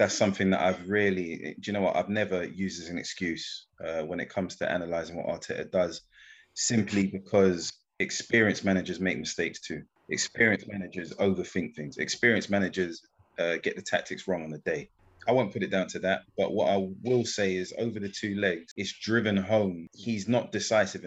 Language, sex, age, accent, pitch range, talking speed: English, male, 20-39, British, 95-105 Hz, 195 wpm